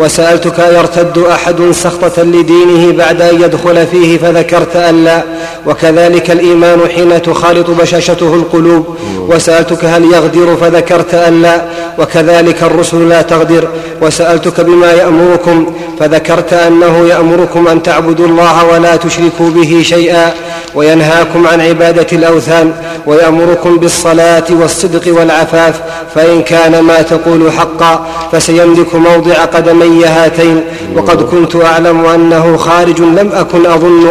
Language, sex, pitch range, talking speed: Arabic, male, 165-170 Hz, 115 wpm